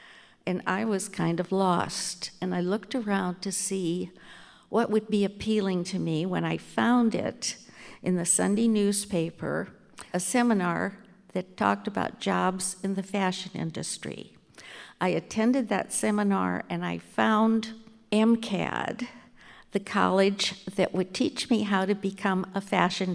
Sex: female